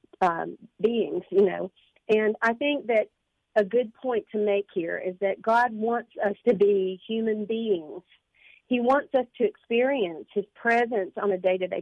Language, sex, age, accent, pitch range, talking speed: English, female, 40-59, American, 195-235 Hz, 170 wpm